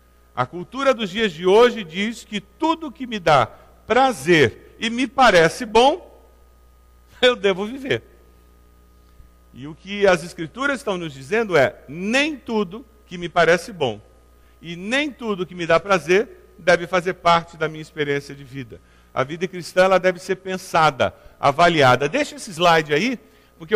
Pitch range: 150-220 Hz